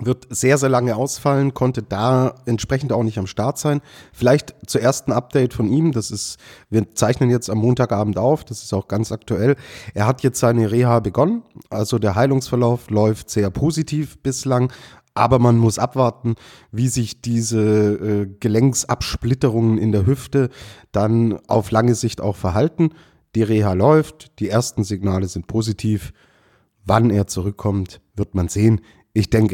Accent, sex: German, male